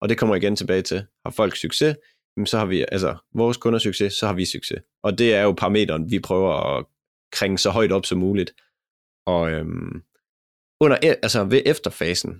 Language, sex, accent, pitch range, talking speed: Danish, male, native, 90-120 Hz, 195 wpm